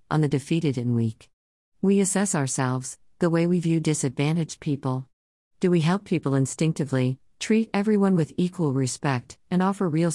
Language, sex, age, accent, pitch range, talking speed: English, female, 50-69, American, 125-180 Hz, 160 wpm